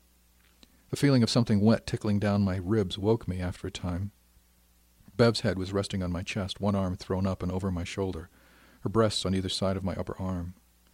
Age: 50-69